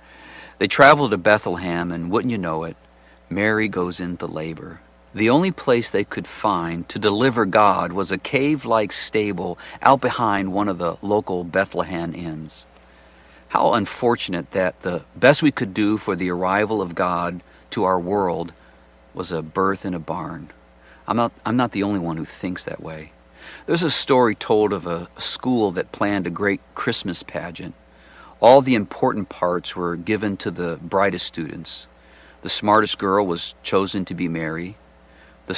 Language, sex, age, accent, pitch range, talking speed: English, male, 50-69, American, 80-105 Hz, 165 wpm